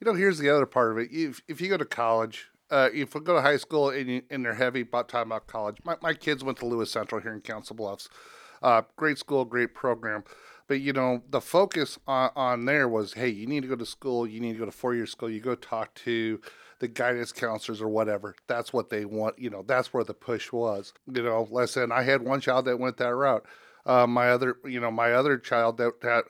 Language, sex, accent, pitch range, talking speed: English, male, American, 115-130 Hz, 250 wpm